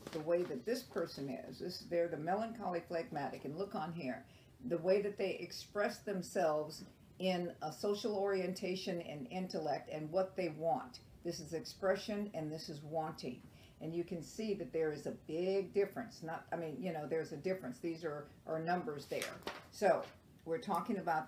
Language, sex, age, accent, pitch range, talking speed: English, female, 50-69, American, 165-205 Hz, 180 wpm